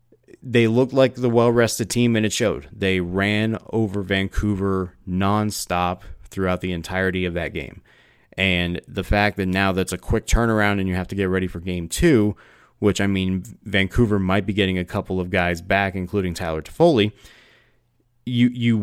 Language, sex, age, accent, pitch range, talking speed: English, male, 30-49, American, 90-110 Hz, 175 wpm